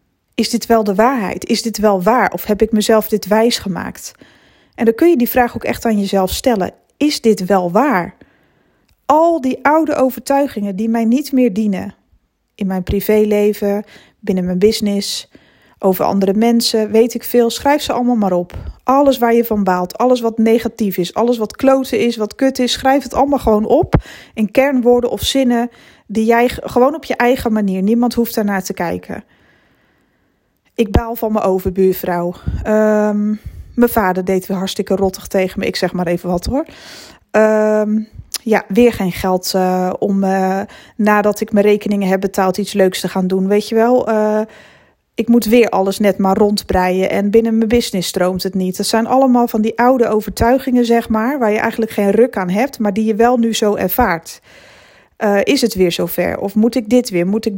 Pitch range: 195-235 Hz